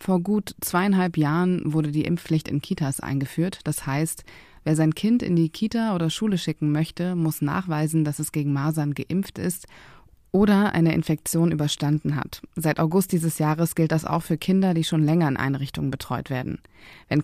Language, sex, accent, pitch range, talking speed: German, female, German, 150-175 Hz, 180 wpm